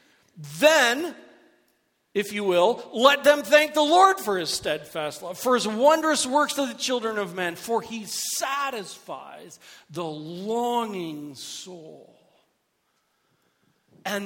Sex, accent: male, American